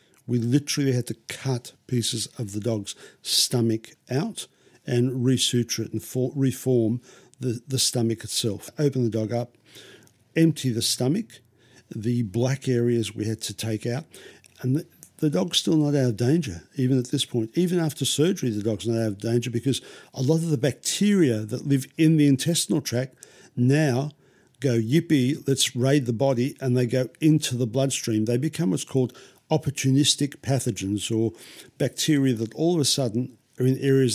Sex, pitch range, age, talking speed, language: male, 115-140 Hz, 50-69, 170 wpm, English